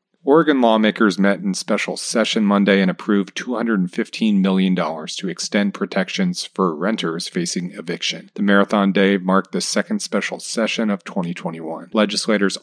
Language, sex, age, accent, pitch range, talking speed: English, male, 40-59, American, 95-110 Hz, 140 wpm